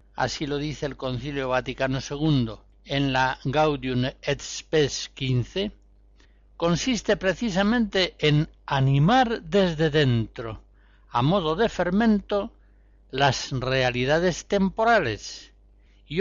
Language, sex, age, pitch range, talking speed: Spanish, male, 60-79, 130-185 Hz, 100 wpm